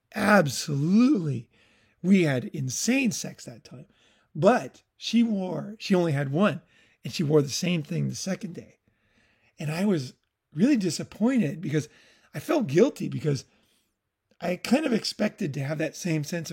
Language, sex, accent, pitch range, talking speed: English, male, American, 140-185 Hz, 155 wpm